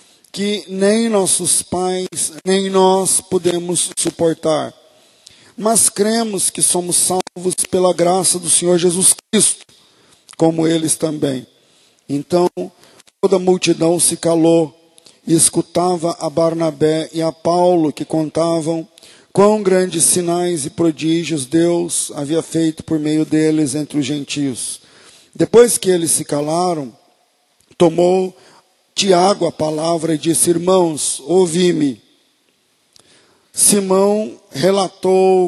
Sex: male